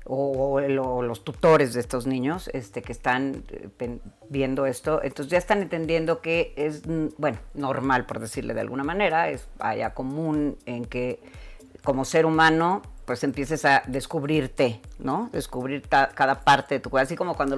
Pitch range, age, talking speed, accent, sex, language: 135-165 Hz, 40-59, 160 wpm, Mexican, female, Spanish